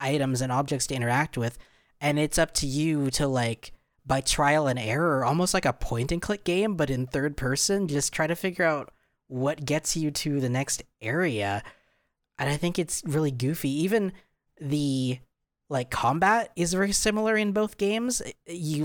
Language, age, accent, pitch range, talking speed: English, 20-39, American, 115-145 Hz, 180 wpm